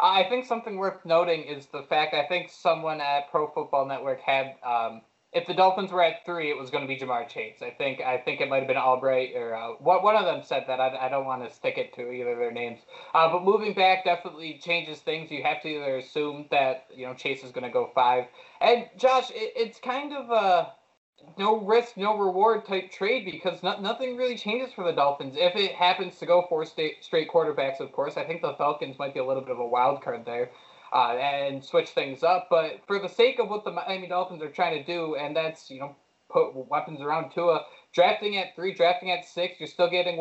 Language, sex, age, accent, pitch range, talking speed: English, male, 20-39, American, 145-185 Hz, 235 wpm